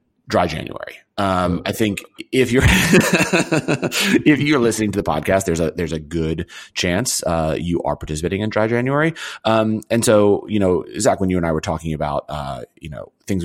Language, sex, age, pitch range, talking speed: English, male, 30-49, 80-105 Hz, 190 wpm